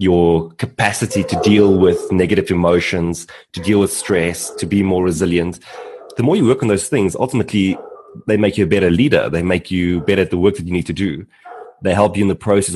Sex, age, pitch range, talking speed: male, 30-49, 95-115 Hz, 220 wpm